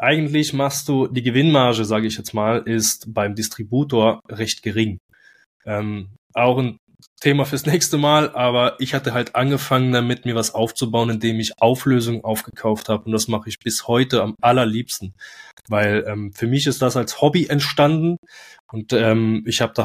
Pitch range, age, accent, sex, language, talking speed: 110-130 Hz, 20-39, German, male, German, 170 wpm